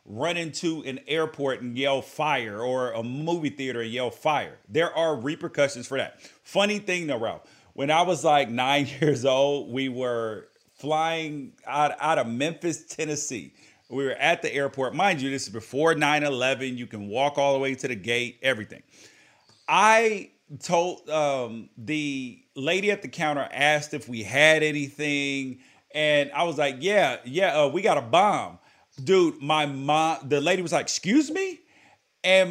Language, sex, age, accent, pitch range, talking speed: English, male, 40-59, American, 135-175 Hz, 170 wpm